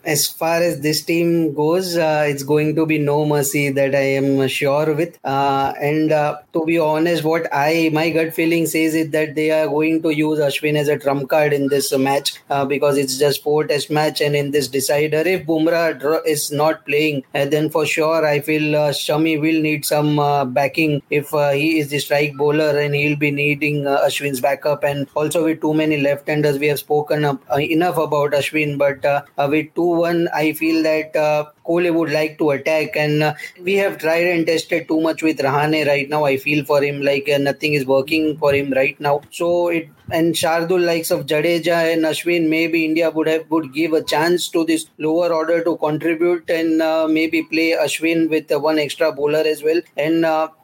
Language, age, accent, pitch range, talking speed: English, 20-39, Indian, 145-160 Hz, 210 wpm